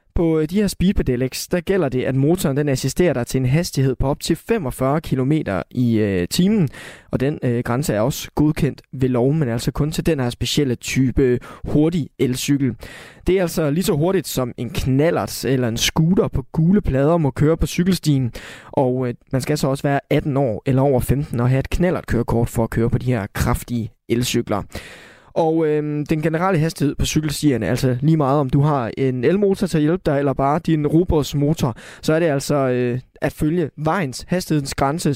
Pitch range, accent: 125-165 Hz, native